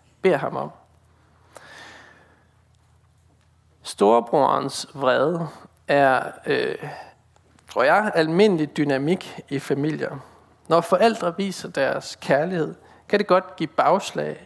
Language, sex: Danish, male